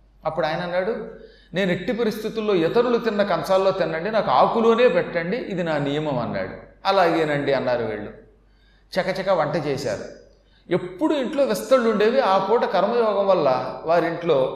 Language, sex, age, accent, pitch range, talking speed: Telugu, male, 30-49, native, 175-230 Hz, 130 wpm